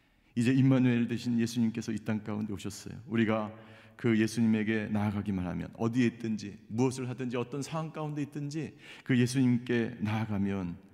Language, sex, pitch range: Korean, male, 110-160 Hz